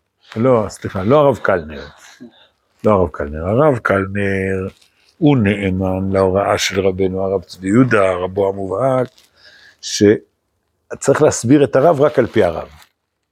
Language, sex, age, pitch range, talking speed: Hebrew, male, 60-79, 90-125 Hz, 125 wpm